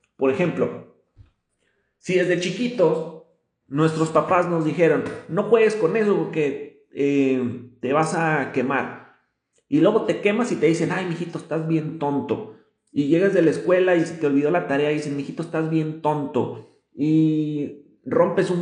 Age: 30-49